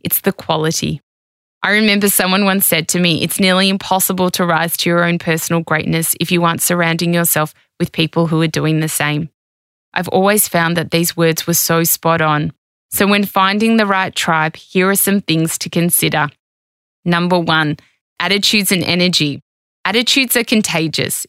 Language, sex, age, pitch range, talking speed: English, female, 20-39, 165-195 Hz, 175 wpm